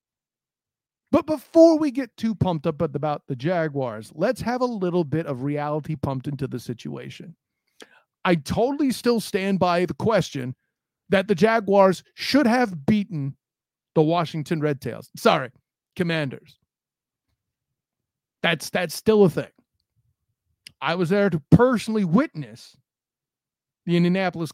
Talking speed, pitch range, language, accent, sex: 130 wpm, 145-195 Hz, English, American, male